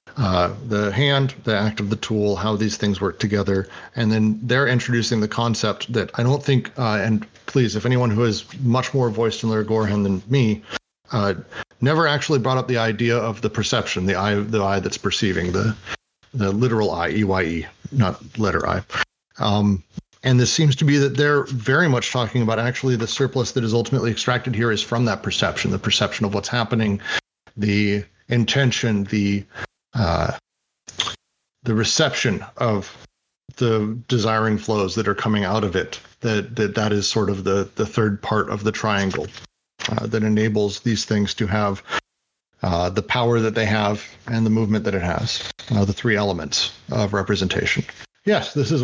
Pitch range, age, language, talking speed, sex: 105-120 Hz, 40-59, English, 185 wpm, male